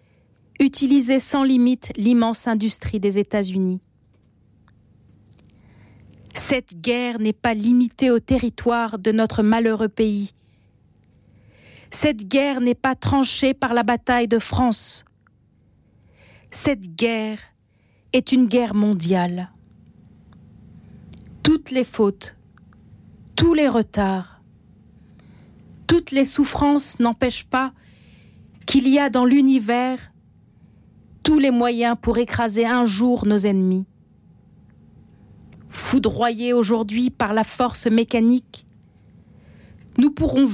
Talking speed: 100 wpm